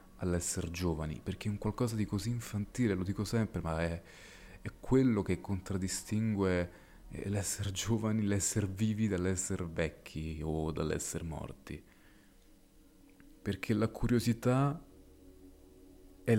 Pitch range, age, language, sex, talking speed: 95-120 Hz, 30-49, Italian, male, 110 wpm